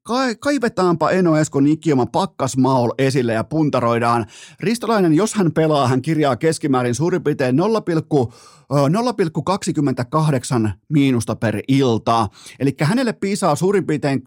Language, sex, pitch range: Finnish, male, 115-145 Hz